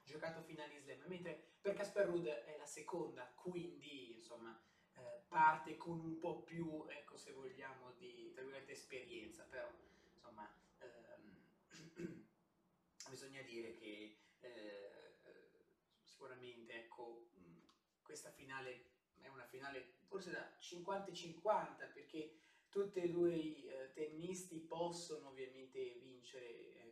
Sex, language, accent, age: male, Italian, native, 20-39